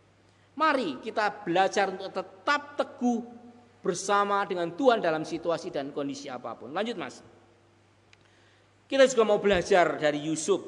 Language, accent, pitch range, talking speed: Indonesian, native, 130-190 Hz, 125 wpm